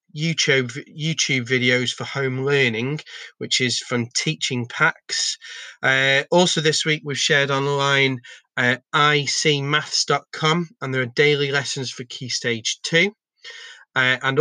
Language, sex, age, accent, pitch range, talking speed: English, male, 30-49, British, 125-150 Hz, 130 wpm